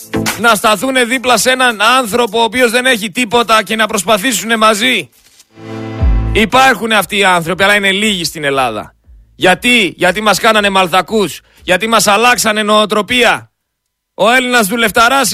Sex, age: male, 30-49